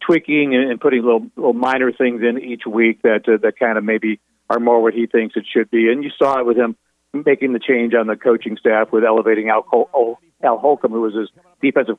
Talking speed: 235 wpm